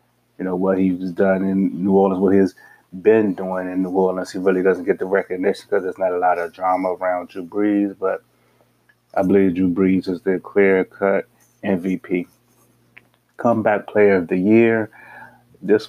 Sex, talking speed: male, 175 wpm